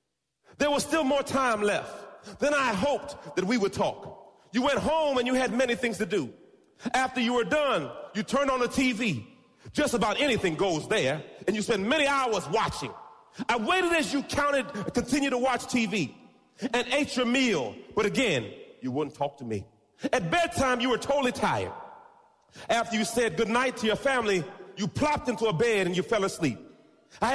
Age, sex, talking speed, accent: 40-59, male, 185 wpm, American